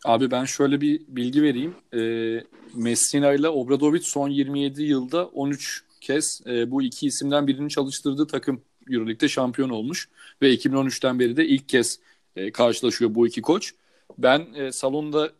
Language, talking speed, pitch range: Turkish, 150 wpm, 130-160 Hz